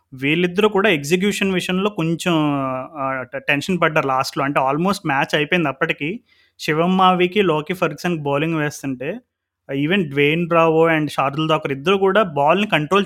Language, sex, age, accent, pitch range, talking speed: Telugu, male, 30-49, native, 145-180 Hz, 130 wpm